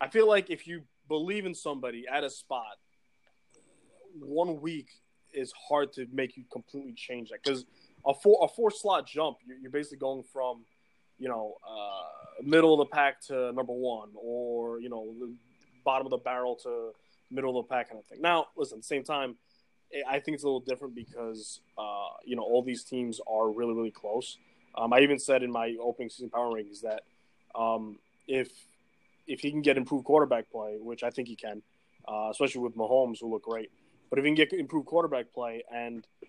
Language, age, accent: English, 20-39, American